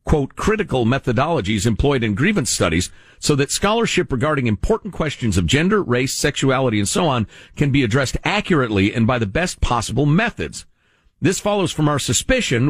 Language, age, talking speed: English, 50-69, 165 wpm